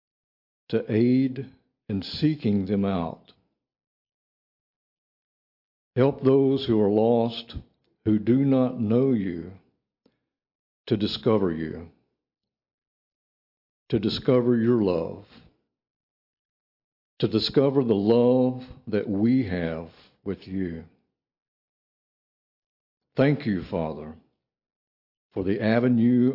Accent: American